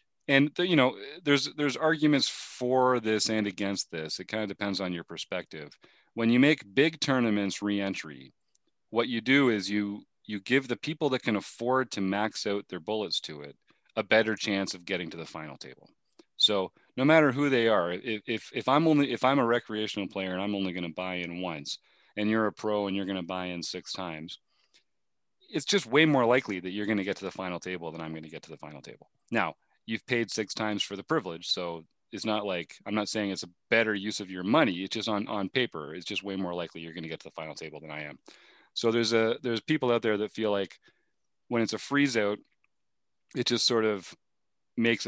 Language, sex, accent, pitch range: English, male, American, 95-115 Hz